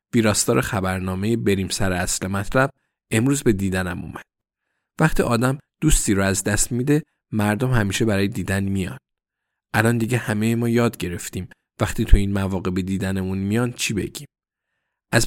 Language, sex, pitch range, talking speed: Persian, male, 100-135 Hz, 155 wpm